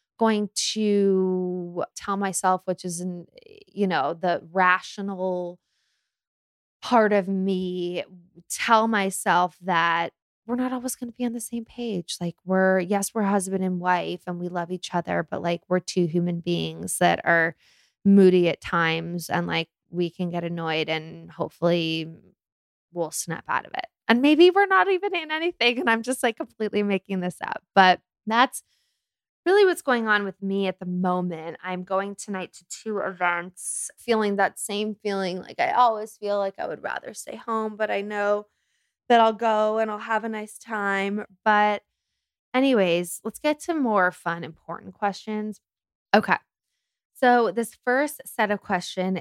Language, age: English, 20-39